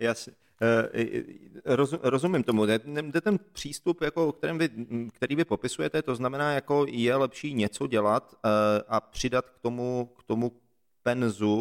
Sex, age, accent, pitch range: male, 40-59, native, 115-130 Hz